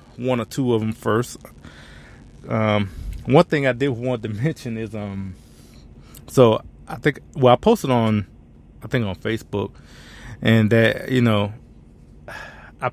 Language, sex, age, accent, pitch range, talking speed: English, male, 30-49, American, 105-140 Hz, 150 wpm